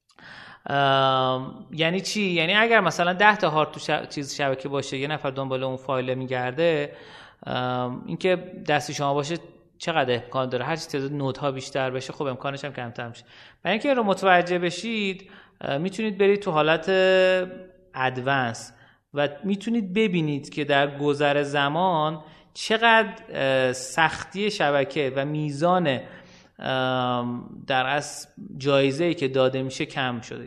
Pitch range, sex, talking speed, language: 135-175 Hz, male, 140 wpm, Persian